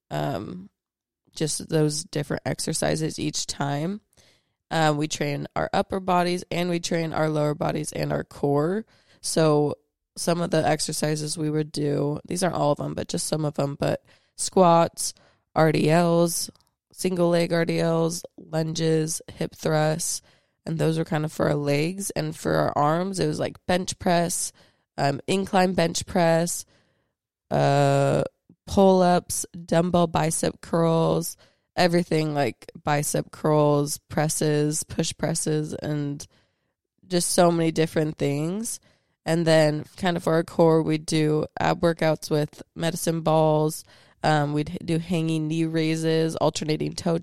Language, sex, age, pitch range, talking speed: English, female, 20-39, 150-170 Hz, 140 wpm